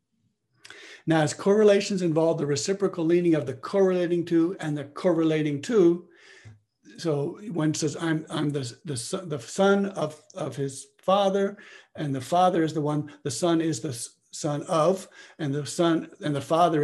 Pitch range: 140-170 Hz